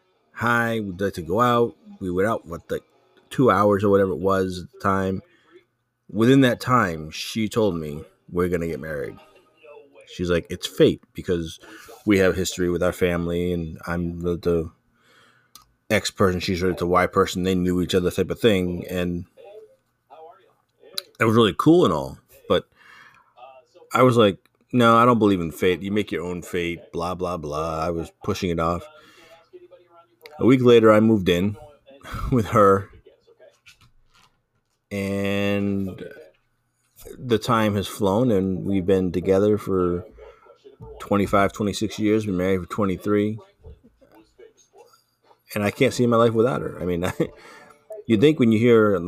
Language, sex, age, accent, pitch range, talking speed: English, male, 30-49, American, 90-120 Hz, 160 wpm